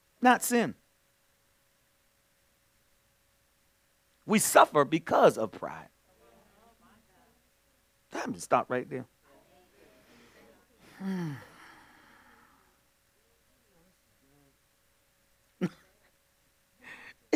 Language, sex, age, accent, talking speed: English, male, 50-69, American, 40 wpm